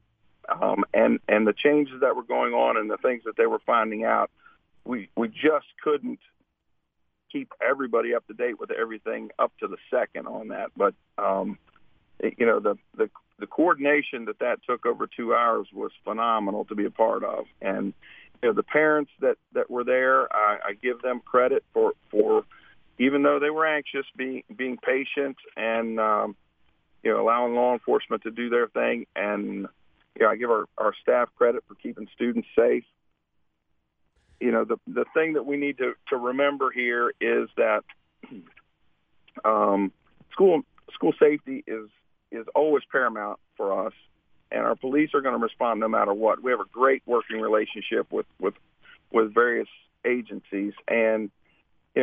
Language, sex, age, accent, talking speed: English, male, 50-69, American, 175 wpm